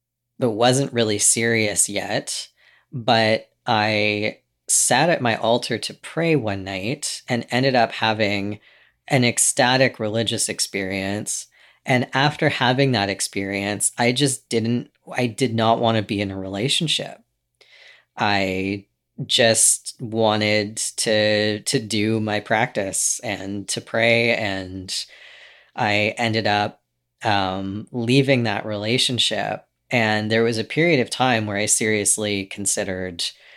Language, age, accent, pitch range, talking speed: English, 30-49, American, 100-125 Hz, 125 wpm